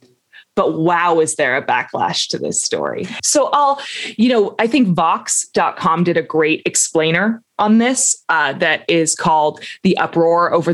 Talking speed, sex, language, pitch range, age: 160 wpm, female, English, 165-220 Hz, 20-39